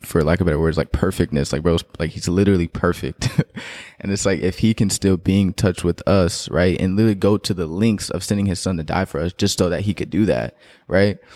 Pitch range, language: 85-100 Hz, English